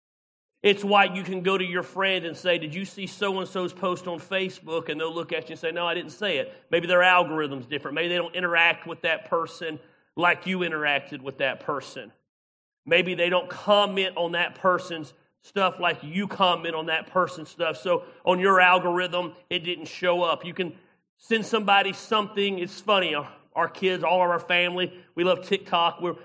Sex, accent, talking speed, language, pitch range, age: male, American, 195 wpm, English, 165-200 Hz, 40-59